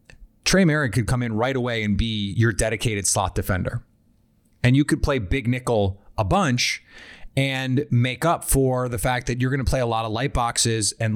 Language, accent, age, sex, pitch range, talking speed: English, American, 30-49, male, 105-130 Hz, 205 wpm